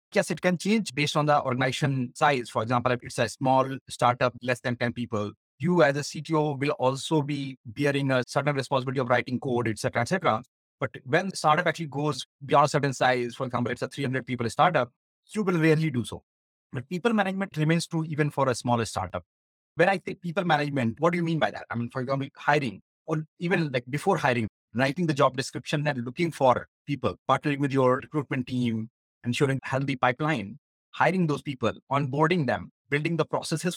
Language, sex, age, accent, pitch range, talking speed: English, male, 30-49, Indian, 125-155 Hz, 205 wpm